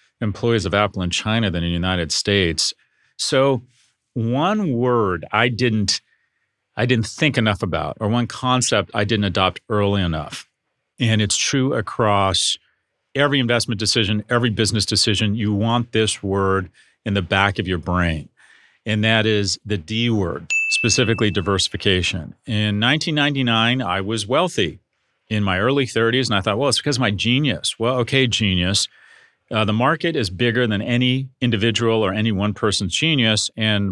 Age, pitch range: 40-59, 95-120 Hz